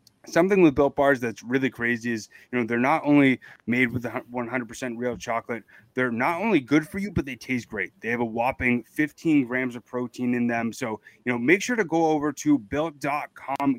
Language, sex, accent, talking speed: English, male, American, 210 wpm